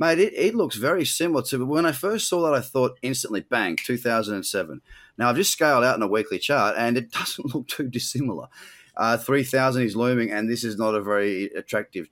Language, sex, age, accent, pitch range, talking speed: English, male, 30-49, Australian, 105-130 Hz, 215 wpm